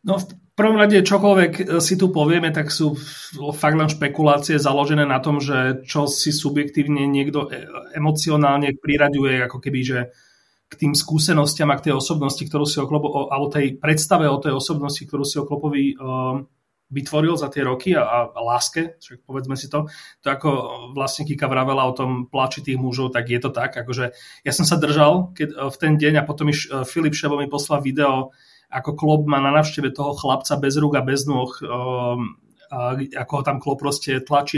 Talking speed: 180 wpm